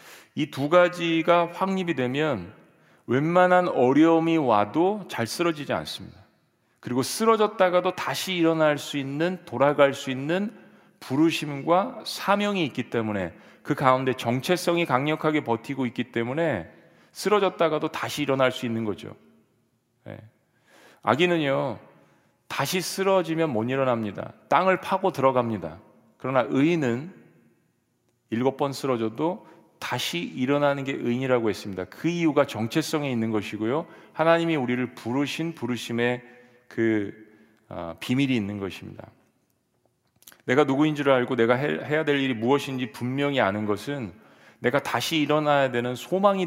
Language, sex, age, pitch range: Korean, male, 40-59, 120-160 Hz